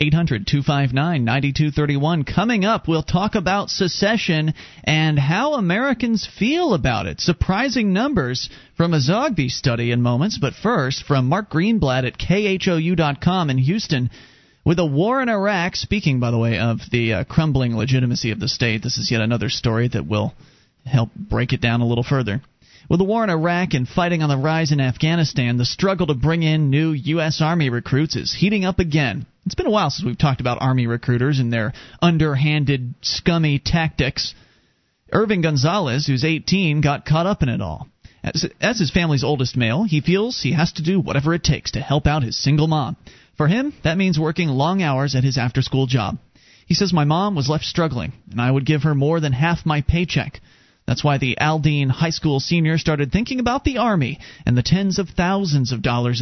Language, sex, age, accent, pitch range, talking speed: English, male, 30-49, American, 130-175 Hz, 190 wpm